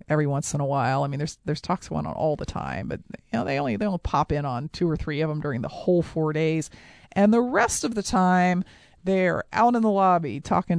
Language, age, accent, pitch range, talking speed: English, 40-59, American, 155-200 Hz, 260 wpm